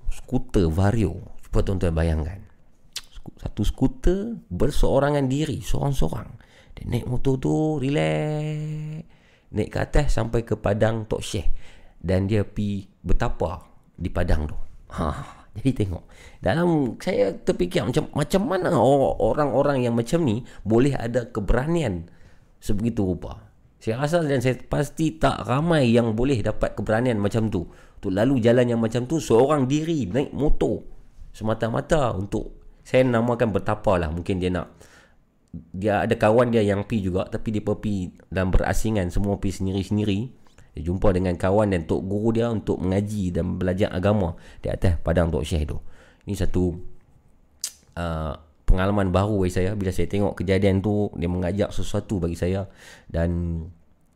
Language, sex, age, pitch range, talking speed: Malay, male, 40-59, 90-125 Hz, 145 wpm